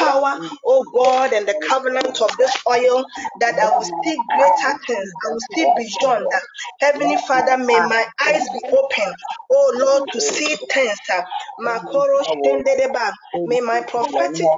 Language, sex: English, female